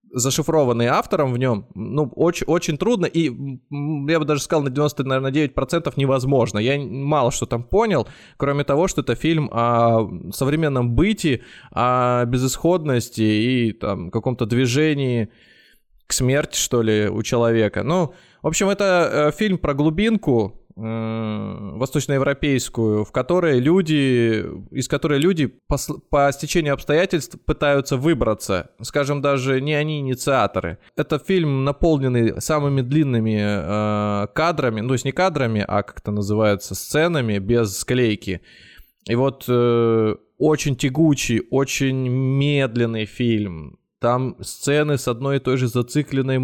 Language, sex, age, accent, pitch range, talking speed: Russian, male, 20-39, native, 120-150 Hz, 120 wpm